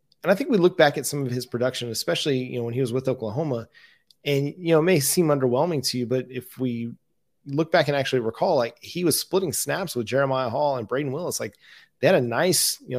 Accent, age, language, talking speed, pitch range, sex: American, 30-49, English, 240 wpm, 120-140 Hz, male